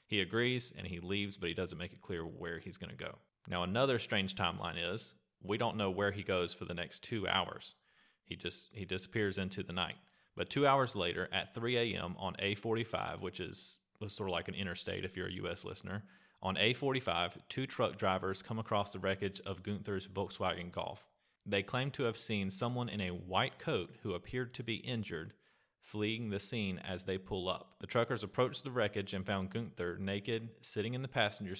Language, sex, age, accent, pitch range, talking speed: English, male, 30-49, American, 95-110 Hz, 205 wpm